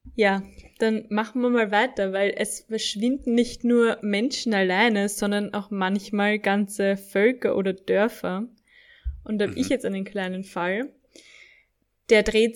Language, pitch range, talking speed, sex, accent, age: German, 200-235 Hz, 145 wpm, female, German, 20-39